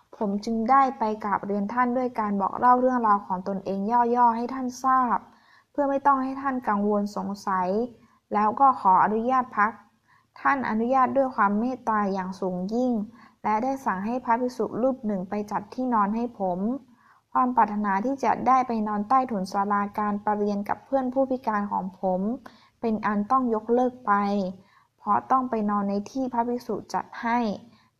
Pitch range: 200-250 Hz